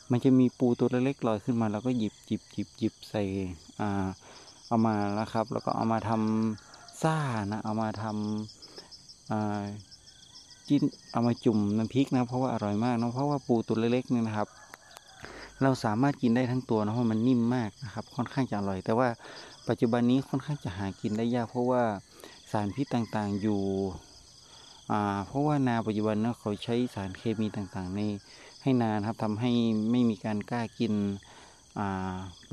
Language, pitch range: Thai, 105-125 Hz